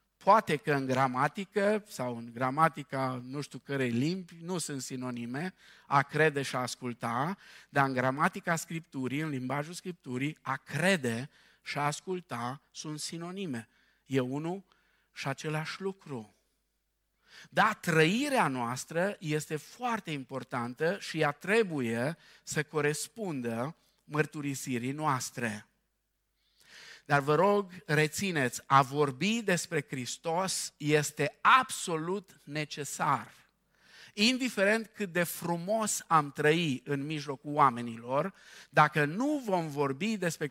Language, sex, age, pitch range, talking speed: Romanian, male, 50-69, 140-190 Hz, 115 wpm